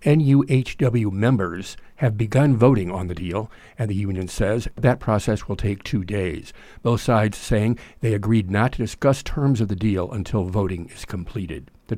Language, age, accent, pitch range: English, 50-69, American, 100-125 Hz